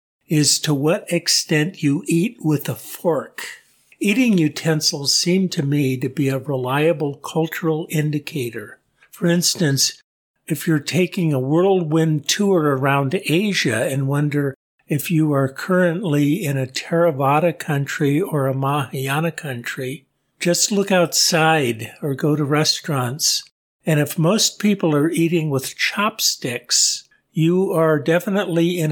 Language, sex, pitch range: English, male, 140-170 Hz